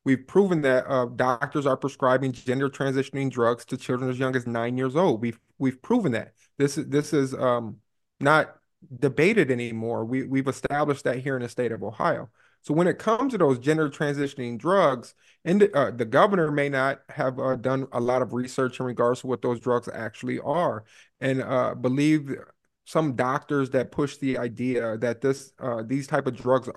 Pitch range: 120-140 Hz